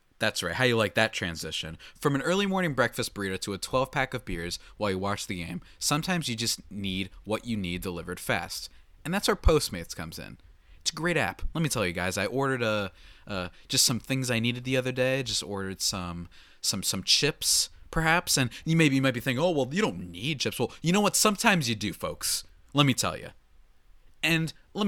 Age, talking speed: 20-39, 225 wpm